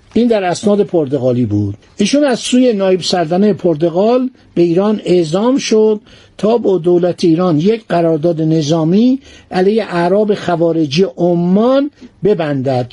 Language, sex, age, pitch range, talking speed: Persian, male, 60-79, 165-220 Hz, 120 wpm